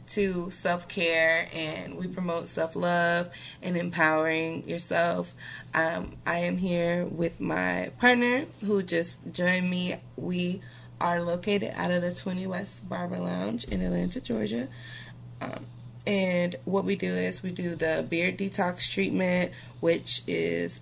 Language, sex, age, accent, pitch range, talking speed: English, female, 20-39, American, 155-185 Hz, 135 wpm